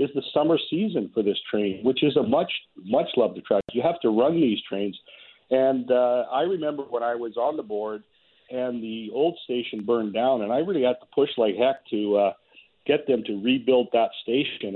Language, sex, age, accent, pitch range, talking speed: English, male, 50-69, American, 105-130 Hz, 210 wpm